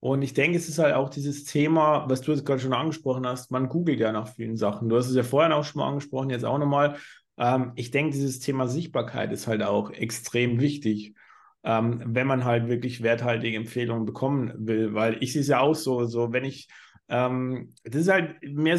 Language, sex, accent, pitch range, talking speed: German, male, German, 115-145 Hz, 220 wpm